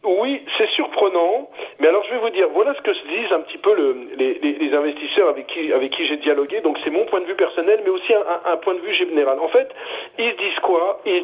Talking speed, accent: 260 wpm, French